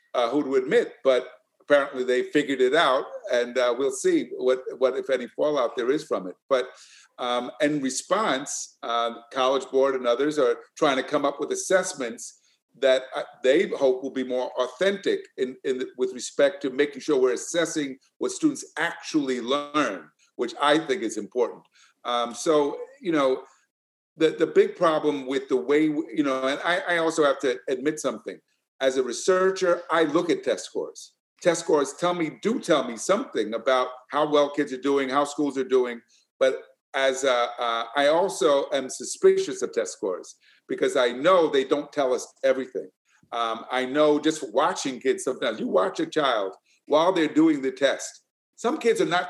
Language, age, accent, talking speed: English, 50-69, American, 185 wpm